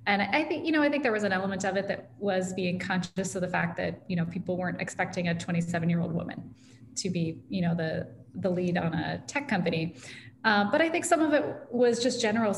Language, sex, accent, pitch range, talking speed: English, female, American, 180-220 Hz, 240 wpm